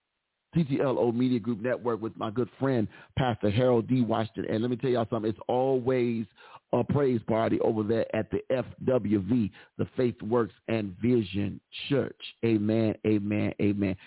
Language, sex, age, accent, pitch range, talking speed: English, male, 40-59, American, 110-130 Hz, 160 wpm